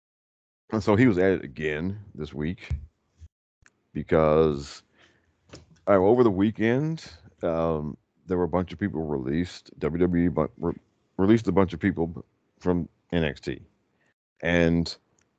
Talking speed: 130 wpm